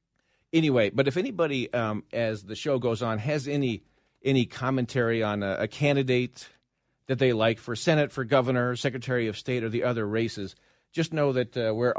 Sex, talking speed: male, 185 wpm